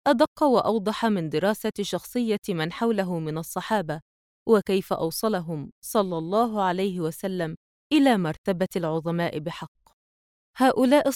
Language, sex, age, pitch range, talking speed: Arabic, female, 20-39, 175-230 Hz, 110 wpm